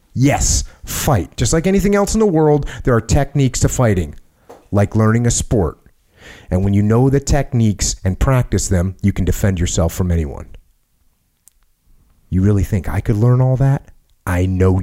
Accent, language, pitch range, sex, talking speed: American, English, 80-120 Hz, male, 175 wpm